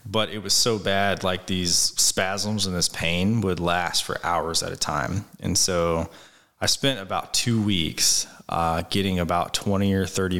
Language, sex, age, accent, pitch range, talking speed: English, male, 20-39, American, 85-100 Hz, 180 wpm